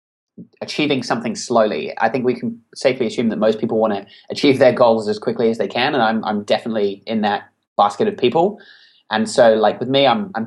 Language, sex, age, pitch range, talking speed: English, male, 20-39, 110-135 Hz, 220 wpm